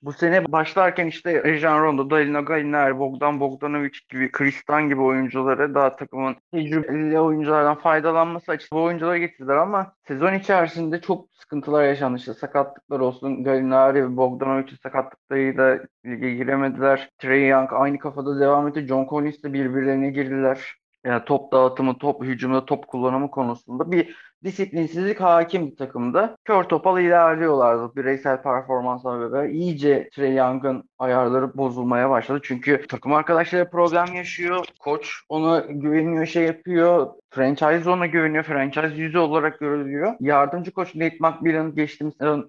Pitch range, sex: 130-160 Hz, male